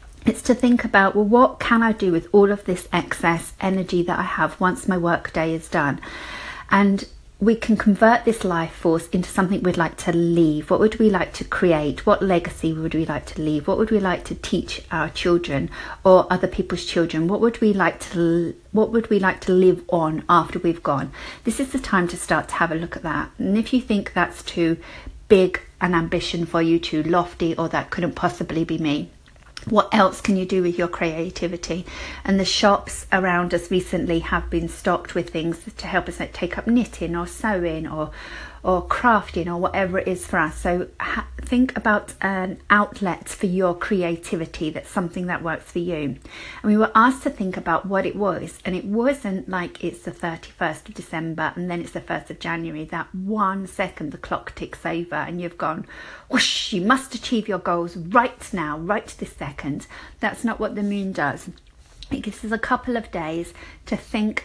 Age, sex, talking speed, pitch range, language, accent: 40-59, female, 200 wpm, 170-205 Hz, English, British